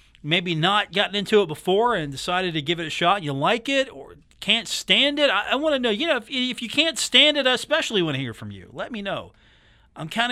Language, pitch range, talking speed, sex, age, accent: English, 145-205 Hz, 260 wpm, male, 40-59, American